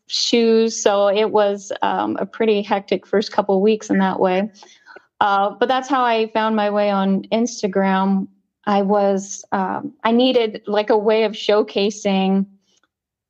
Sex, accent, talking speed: female, American, 160 wpm